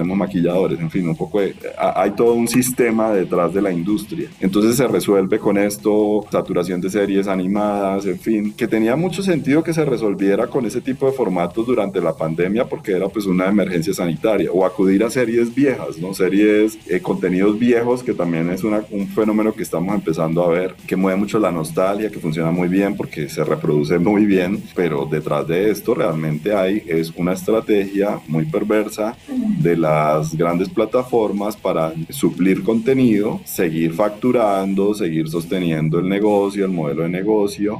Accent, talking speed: Colombian, 175 wpm